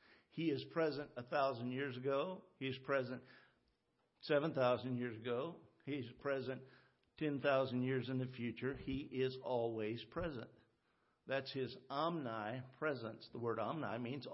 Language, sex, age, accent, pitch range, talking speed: English, male, 50-69, American, 115-135 Hz, 130 wpm